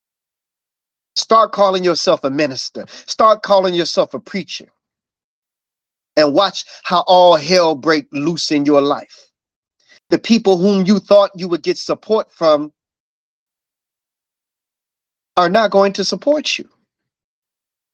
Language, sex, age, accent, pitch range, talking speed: English, male, 40-59, American, 150-210 Hz, 120 wpm